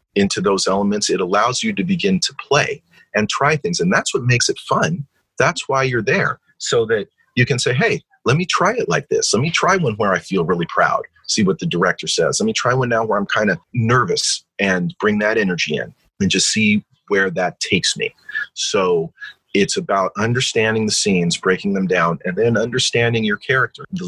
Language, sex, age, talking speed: English, male, 40-59, 215 wpm